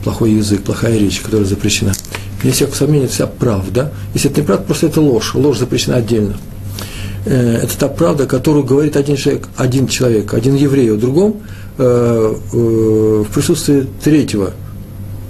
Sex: male